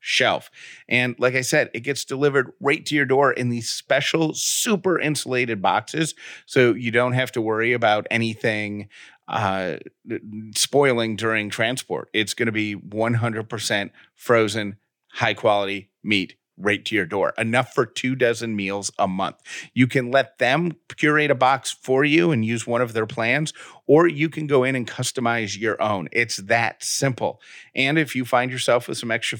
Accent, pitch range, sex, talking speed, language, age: American, 110-135 Hz, male, 175 wpm, English, 40-59